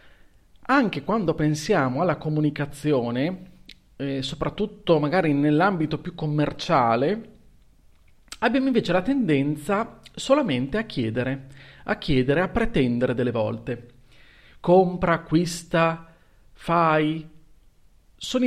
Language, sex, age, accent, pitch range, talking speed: Italian, male, 40-59, native, 130-180 Hz, 90 wpm